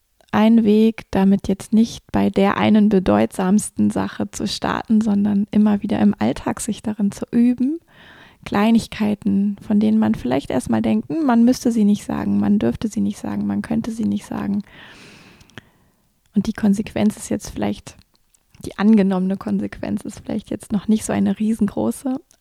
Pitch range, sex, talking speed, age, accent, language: 205-230 Hz, female, 160 wpm, 20-39, German, German